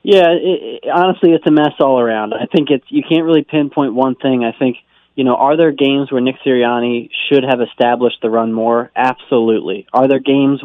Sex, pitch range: male, 120-145 Hz